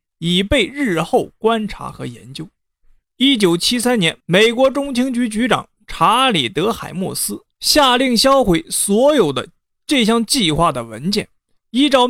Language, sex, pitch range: Chinese, male, 185-255 Hz